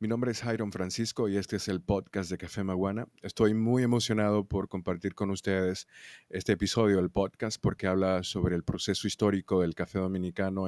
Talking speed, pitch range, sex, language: 185 wpm, 95-110 Hz, male, Spanish